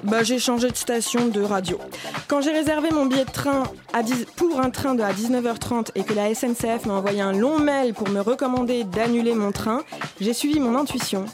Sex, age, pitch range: female, 20-39, 225-275 Hz